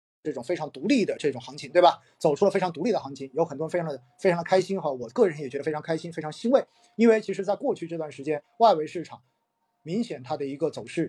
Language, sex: Chinese, male